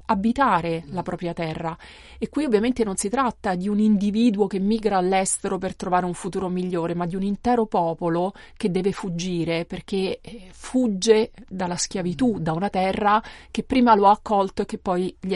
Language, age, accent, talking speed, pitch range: Italian, 30-49, native, 175 wpm, 180-225 Hz